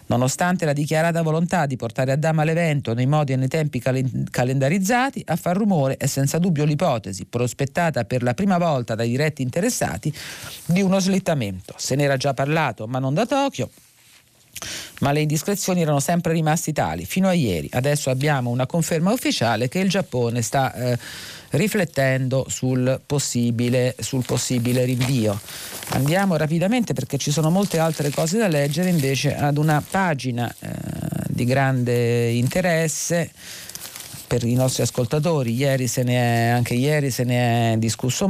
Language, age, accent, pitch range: Italian, 40-59, native, 125-170 Hz